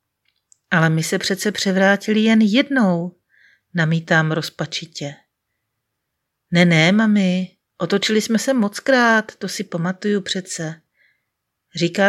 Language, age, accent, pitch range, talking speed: Czech, 40-59, native, 160-210 Hz, 105 wpm